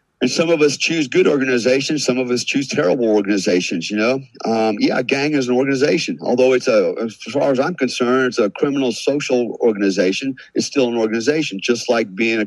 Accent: American